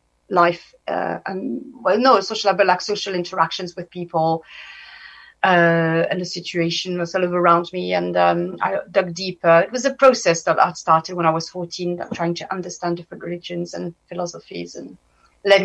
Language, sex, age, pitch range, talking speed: English, female, 30-49, 175-205 Hz, 175 wpm